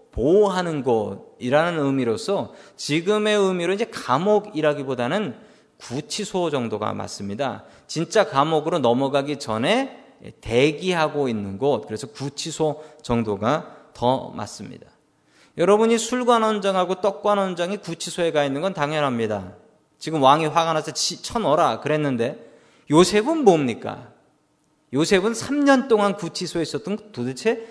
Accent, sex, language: native, male, Korean